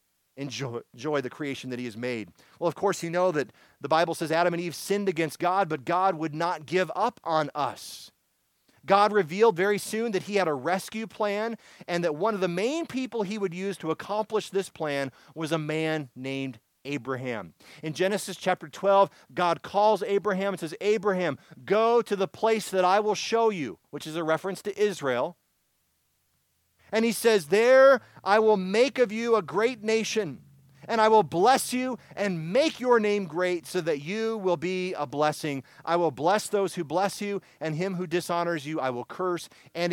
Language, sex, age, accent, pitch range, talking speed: English, male, 40-59, American, 160-220 Hz, 195 wpm